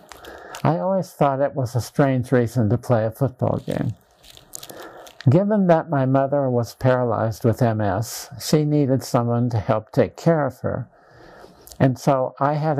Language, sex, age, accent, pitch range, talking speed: English, male, 50-69, American, 115-140 Hz, 150 wpm